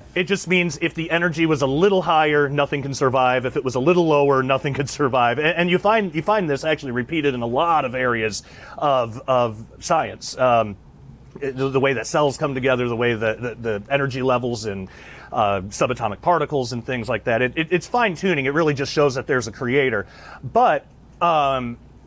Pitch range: 125-165 Hz